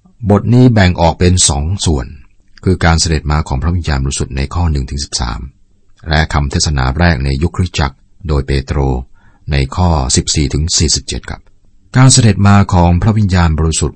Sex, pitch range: male, 75-100 Hz